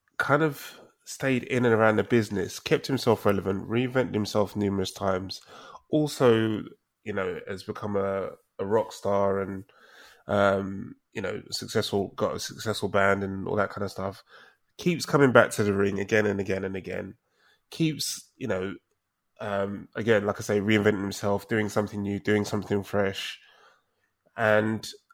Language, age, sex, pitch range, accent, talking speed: English, 20-39, male, 100-120 Hz, British, 160 wpm